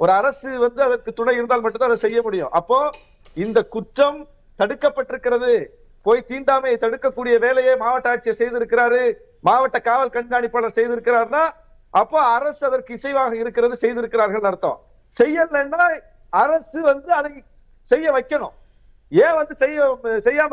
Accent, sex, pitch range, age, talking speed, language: native, male, 230-290 Hz, 50-69, 115 wpm, Tamil